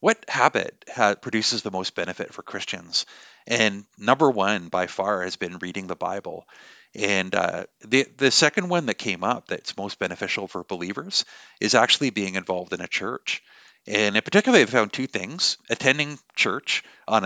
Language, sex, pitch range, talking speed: English, male, 95-120 Hz, 170 wpm